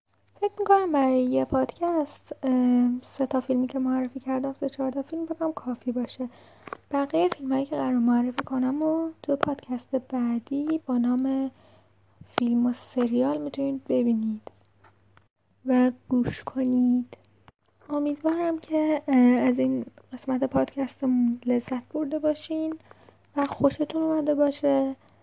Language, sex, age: Persian, female, 10-29